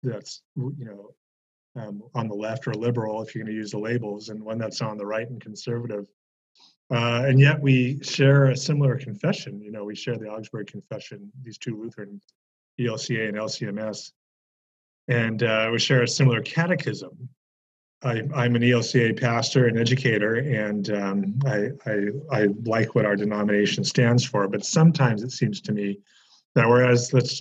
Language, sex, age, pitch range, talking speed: English, male, 30-49, 110-135 Hz, 175 wpm